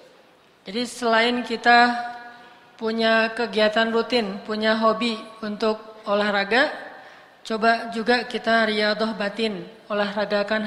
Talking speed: 90 wpm